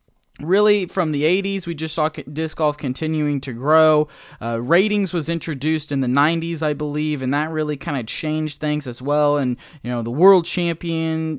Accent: American